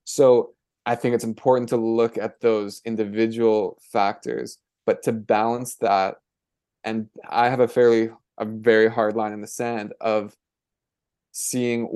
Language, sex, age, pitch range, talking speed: English, male, 20-39, 110-120 Hz, 145 wpm